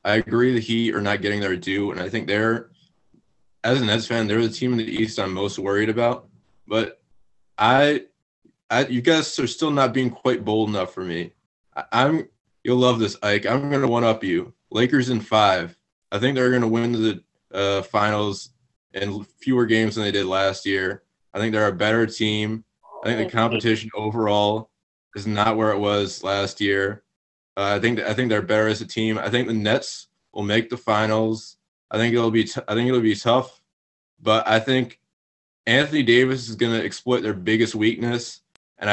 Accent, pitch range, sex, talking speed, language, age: American, 105-125 Hz, male, 200 wpm, English, 20-39